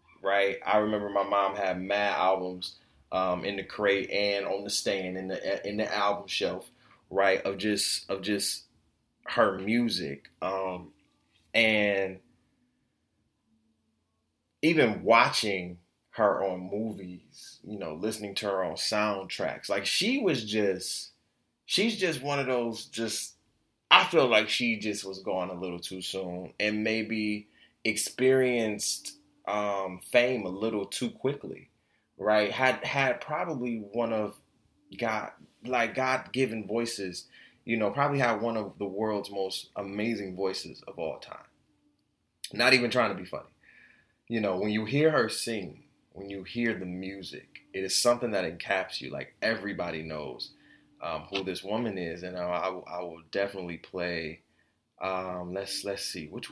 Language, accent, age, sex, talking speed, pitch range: English, American, 20-39, male, 150 wpm, 95-115 Hz